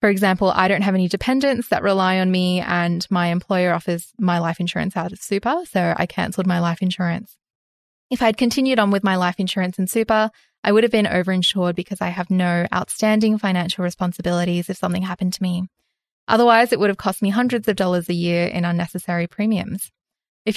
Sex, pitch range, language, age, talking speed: female, 180-215 Hz, English, 10-29, 205 wpm